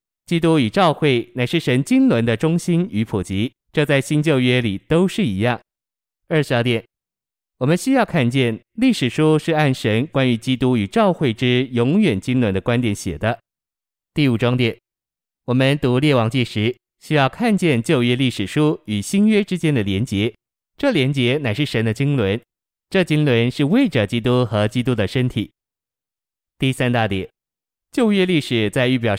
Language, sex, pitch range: Chinese, male, 115-145 Hz